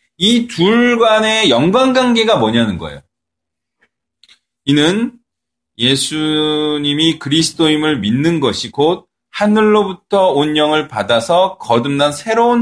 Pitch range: 130-210 Hz